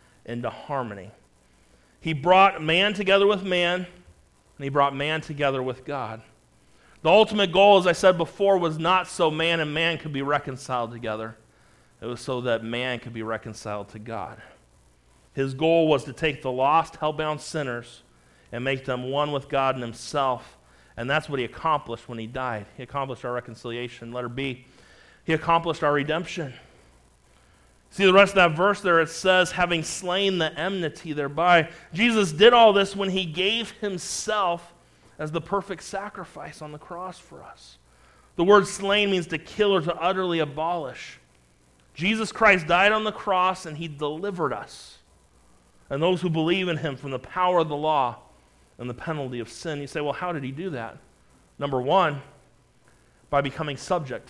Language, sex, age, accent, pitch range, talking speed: English, male, 40-59, American, 120-180 Hz, 175 wpm